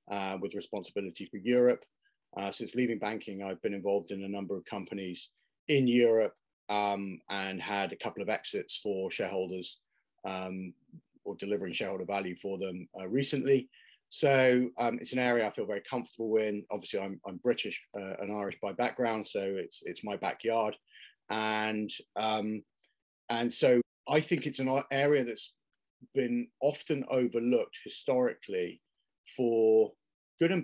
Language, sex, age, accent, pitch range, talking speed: English, male, 40-59, British, 100-125 Hz, 155 wpm